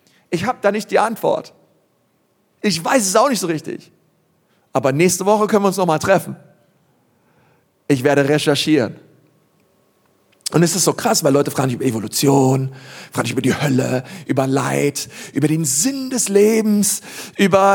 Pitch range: 175-225 Hz